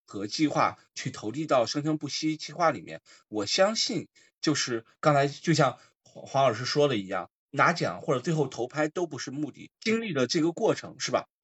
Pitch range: 125-165 Hz